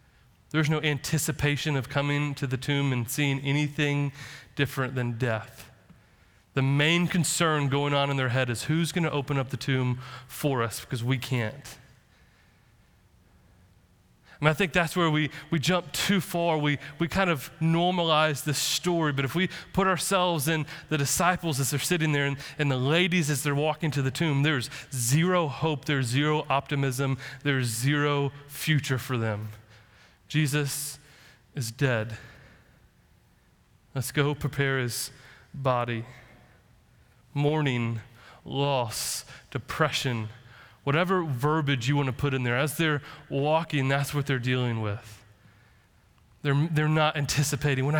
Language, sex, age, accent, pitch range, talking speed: English, male, 30-49, American, 125-150 Hz, 145 wpm